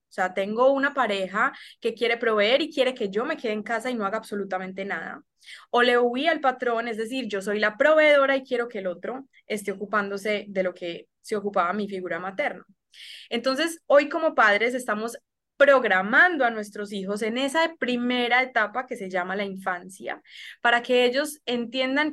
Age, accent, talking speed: 20-39, Colombian, 185 wpm